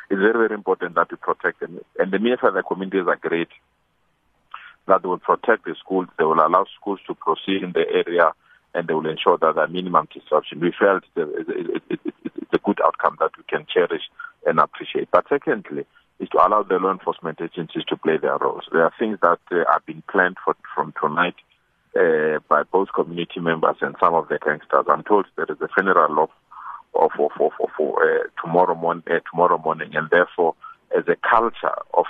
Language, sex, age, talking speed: English, male, 50-69, 210 wpm